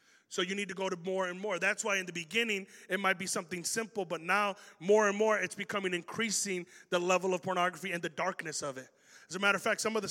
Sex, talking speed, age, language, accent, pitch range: male, 260 wpm, 30-49, English, American, 145-190 Hz